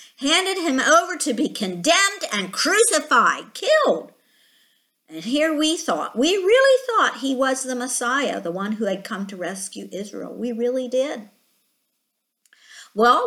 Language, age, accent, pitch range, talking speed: English, 50-69, American, 210-320 Hz, 145 wpm